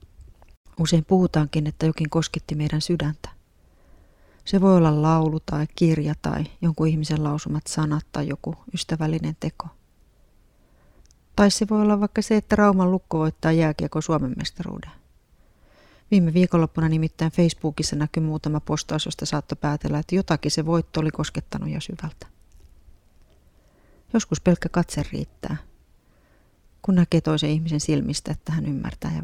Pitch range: 145-170 Hz